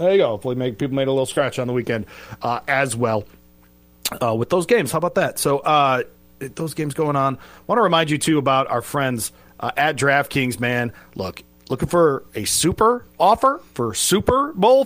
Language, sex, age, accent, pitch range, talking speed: English, male, 40-59, American, 130-185 Hz, 205 wpm